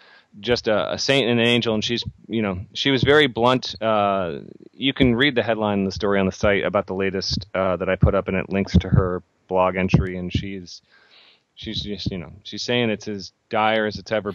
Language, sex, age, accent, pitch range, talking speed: English, male, 30-49, American, 95-110 Hz, 230 wpm